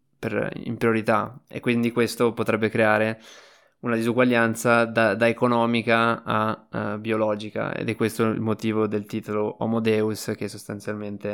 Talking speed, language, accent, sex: 130 wpm, Italian, native, male